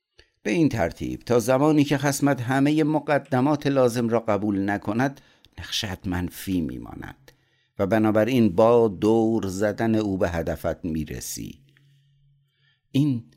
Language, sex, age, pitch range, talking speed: Persian, male, 60-79, 90-130 Hz, 115 wpm